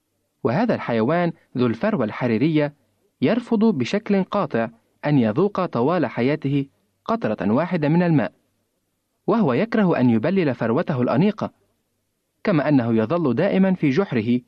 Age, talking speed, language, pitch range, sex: 30-49, 115 wpm, Arabic, 125-180 Hz, male